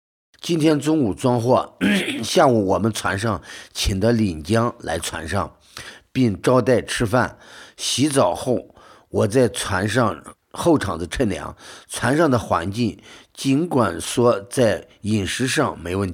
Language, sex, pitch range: Chinese, male, 95-130 Hz